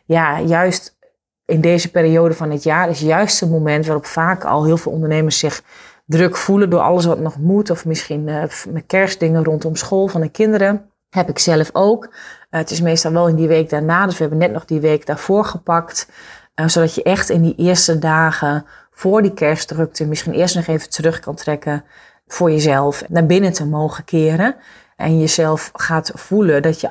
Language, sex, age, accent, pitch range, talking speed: Dutch, female, 30-49, Dutch, 155-175 Hz, 200 wpm